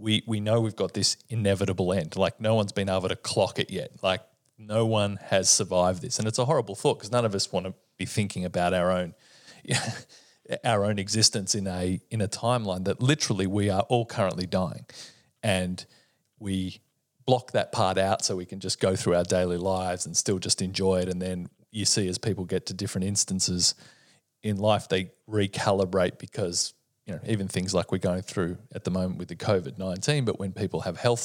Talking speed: 205 wpm